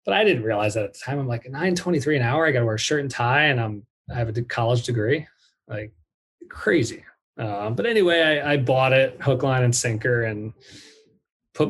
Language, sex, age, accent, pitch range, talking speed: English, male, 20-39, American, 115-140 Hz, 225 wpm